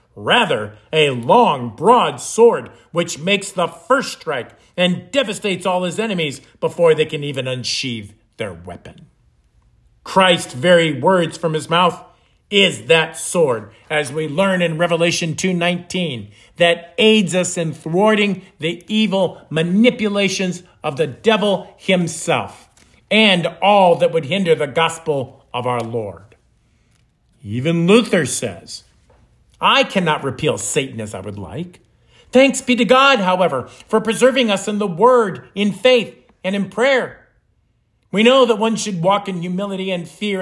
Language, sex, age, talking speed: English, male, 50-69, 145 wpm